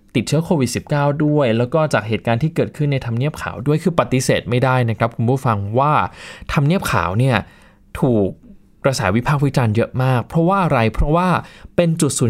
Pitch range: 115-155 Hz